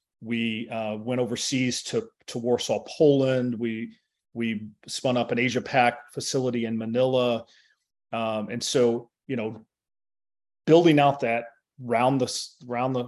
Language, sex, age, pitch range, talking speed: English, male, 30-49, 120-140 Hz, 140 wpm